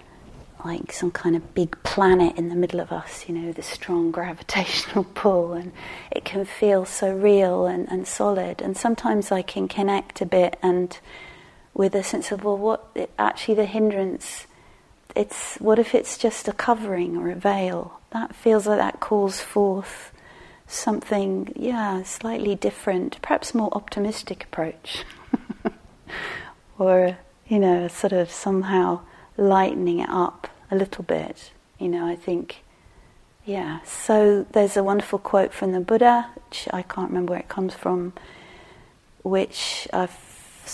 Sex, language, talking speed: female, English, 150 wpm